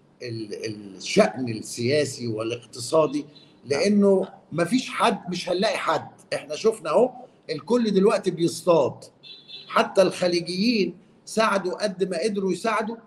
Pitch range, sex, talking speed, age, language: 160-210 Hz, male, 100 wpm, 50-69, Arabic